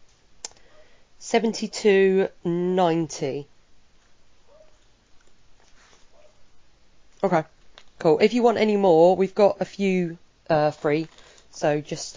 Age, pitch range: 30-49, 160-195 Hz